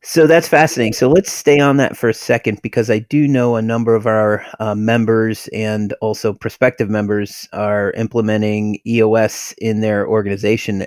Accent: American